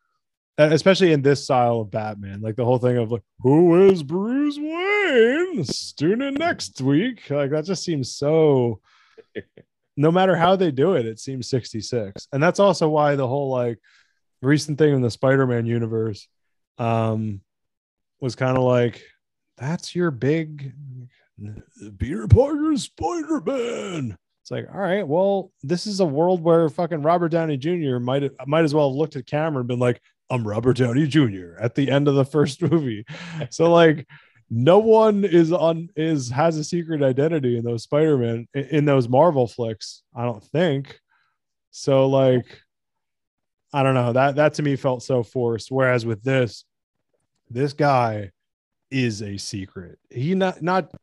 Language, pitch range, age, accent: English, 120-165 Hz, 20-39, American